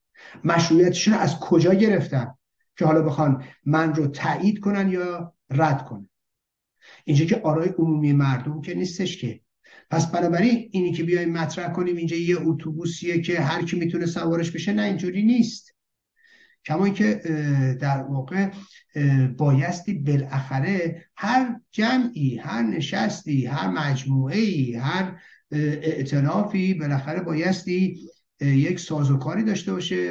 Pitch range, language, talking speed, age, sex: 140-190 Hz, Persian, 125 wpm, 50-69, male